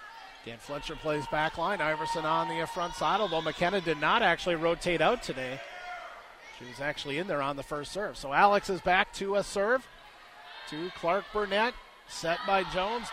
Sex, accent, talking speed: male, American, 185 wpm